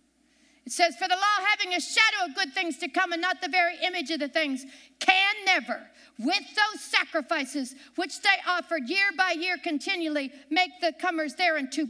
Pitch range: 285-395 Hz